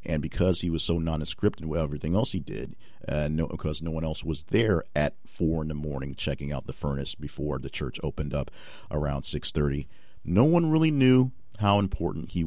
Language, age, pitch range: English, 50-69, 75-95 Hz